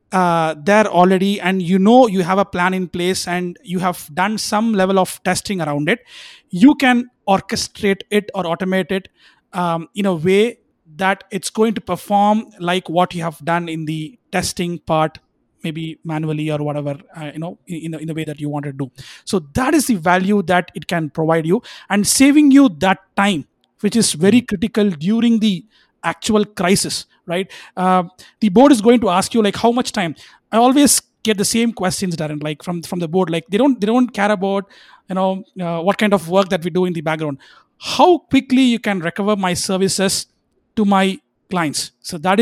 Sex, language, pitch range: male, English, 175-215 Hz